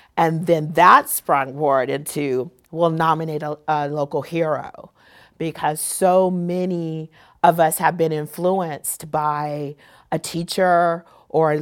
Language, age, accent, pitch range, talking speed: English, 40-59, American, 160-195 Hz, 130 wpm